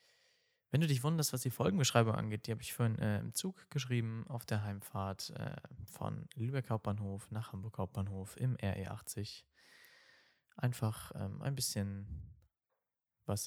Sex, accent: male, German